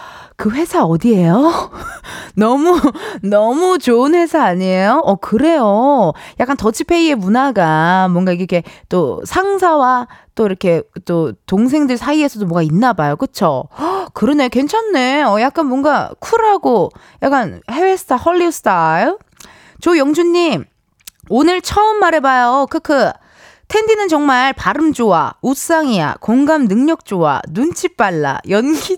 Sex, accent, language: female, native, Korean